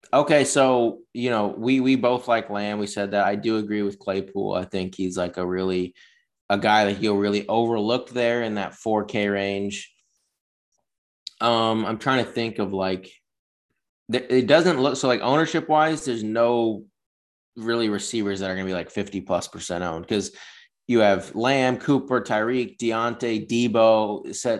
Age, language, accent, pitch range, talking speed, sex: 20-39, English, American, 100-115 Hz, 175 wpm, male